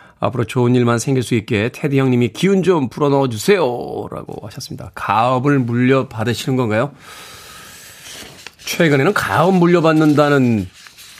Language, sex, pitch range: Korean, male, 110-155 Hz